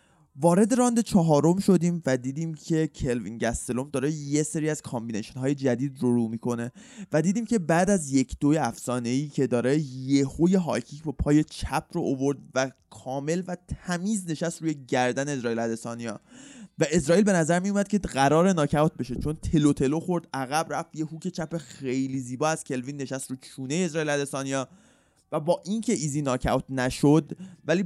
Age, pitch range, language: 20-39, 125-165 Hz, Persian